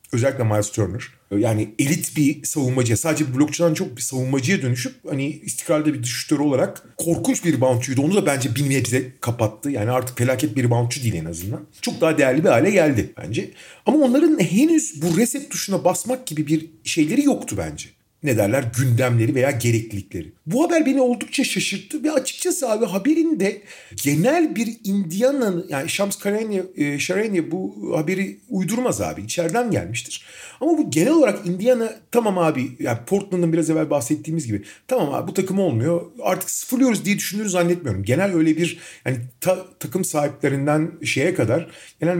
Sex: male